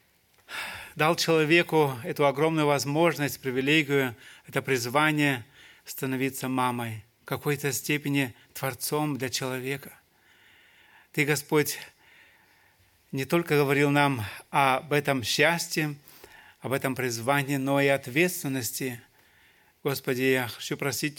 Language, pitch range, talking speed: Russian, 135-150 Hz, 100 wpm